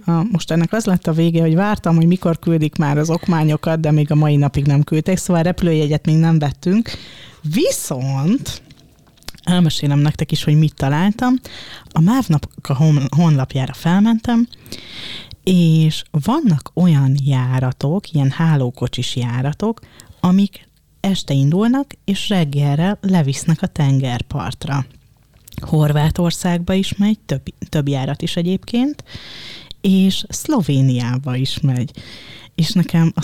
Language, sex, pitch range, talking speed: Hungarian, female, 145-185 Hz, 125 wpm